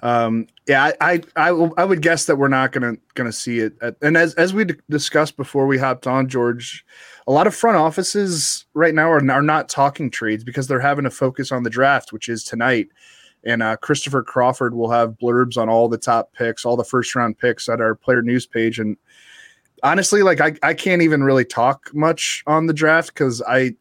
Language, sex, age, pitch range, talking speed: English, male, 20-39, 120-140 Hz, 220 wpm